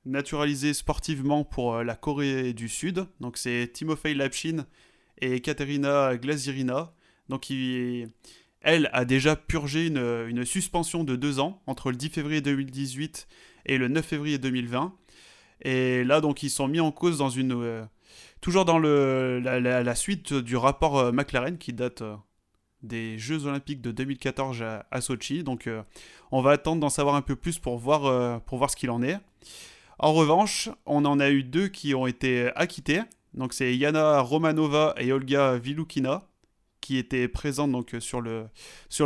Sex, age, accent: male, 20-39, French